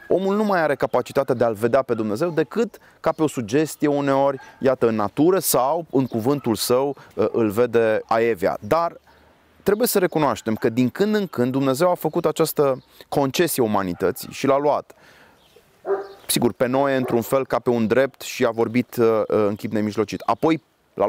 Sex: male